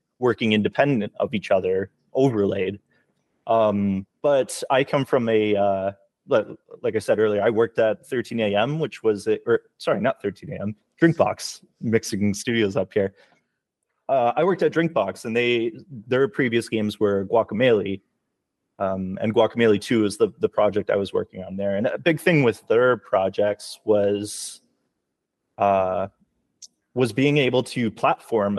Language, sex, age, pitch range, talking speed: English, male, 20-39, 100-125 Hz, 155 wpm